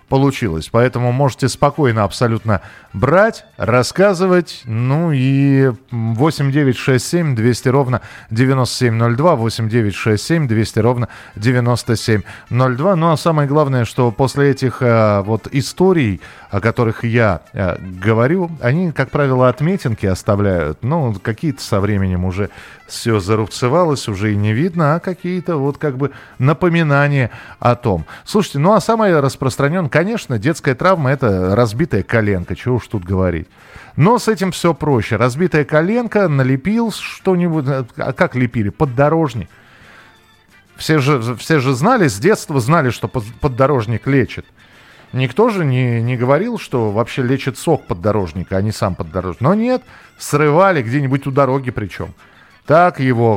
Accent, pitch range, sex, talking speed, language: native, 115-155 Hz, male, 130 wpm, Russian